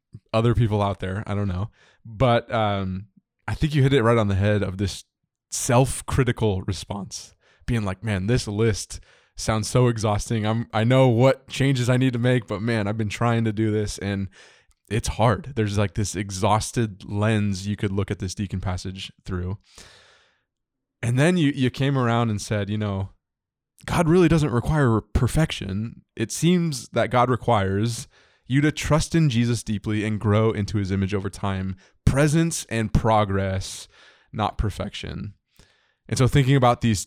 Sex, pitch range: male, 100-125 Hz